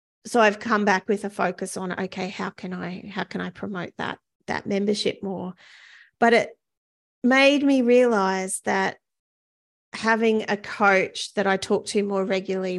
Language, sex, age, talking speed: English, female, 30-49, 165 wpm